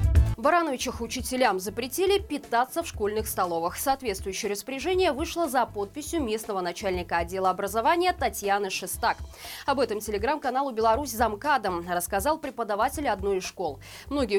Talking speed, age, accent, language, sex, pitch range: 125 wpm, 20-39, native, Russian, female, 200-295 Hz